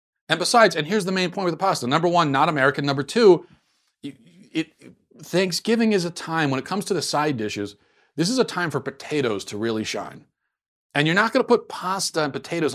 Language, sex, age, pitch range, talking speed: English, male, 40-59, 120-165 Hz, 210 wpm